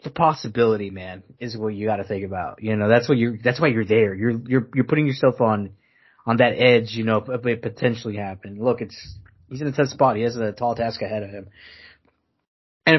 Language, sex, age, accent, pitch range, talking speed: English, male, 20-39, American, 110-130 Hz, 225 wpm